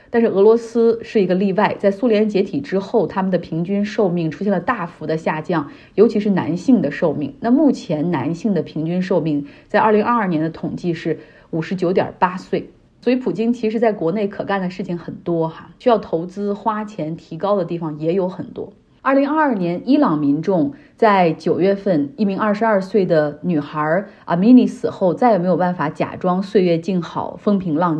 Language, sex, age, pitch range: Chinese, female, 30-49, 165-225 Hz